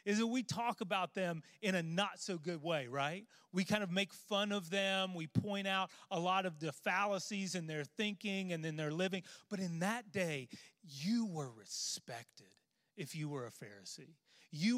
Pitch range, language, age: 155-215 Hz, English, 30-49